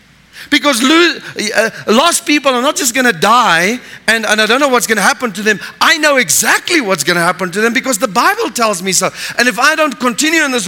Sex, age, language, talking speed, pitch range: male, 50-69, English, 240 wpm, 145-225 Hz